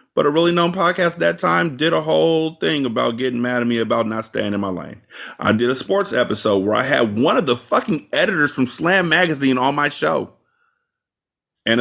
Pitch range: 110-140 Hz